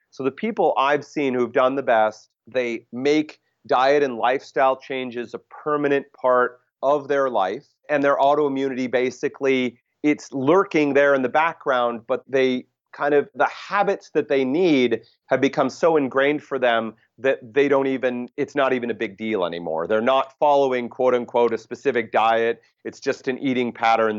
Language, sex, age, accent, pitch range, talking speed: English, male, 30-49, American, 120-145 Hz, 175 wpm